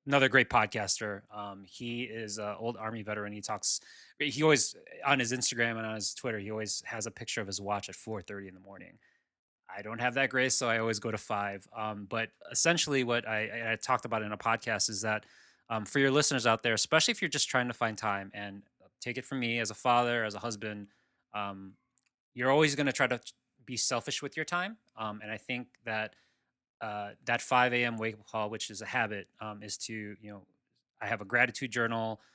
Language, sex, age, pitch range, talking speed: English, male, 20-39, 105-125 Hz, 225 wpm